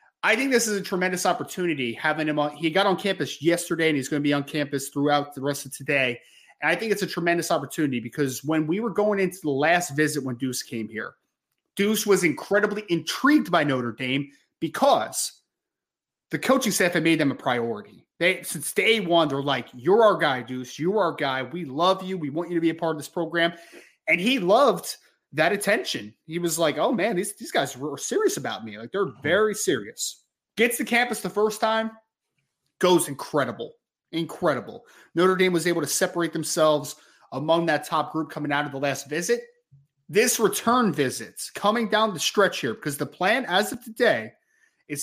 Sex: male